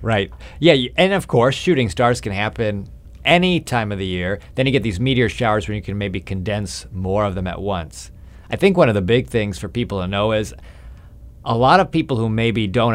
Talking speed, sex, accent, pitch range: 225 wpm, male, American, 95-120 Hz